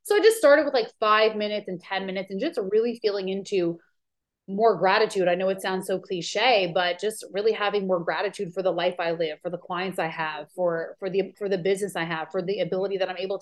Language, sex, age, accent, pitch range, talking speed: English, female, 20-39, American, 180-210 Hz, 240 wpm